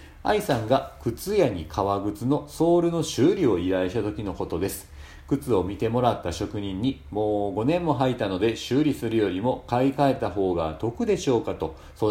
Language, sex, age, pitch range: Japanese, male, 40-59, 95-135 Hz